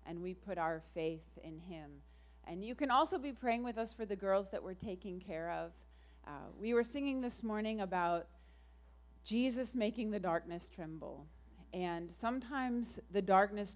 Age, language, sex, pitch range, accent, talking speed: 40-59, English, female, 150-195 Hz, American, 170 wpm